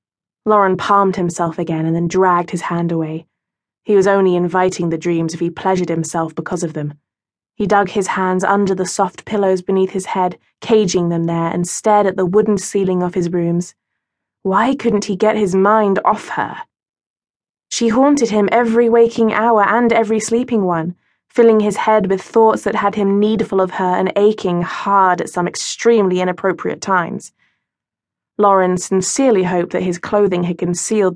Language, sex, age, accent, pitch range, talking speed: English, female, 20-39, British, 175-205 Hz, 175 wpm